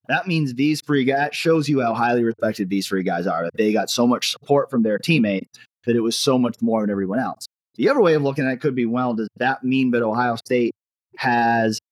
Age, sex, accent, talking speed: 30-49, male, American, 250 wpm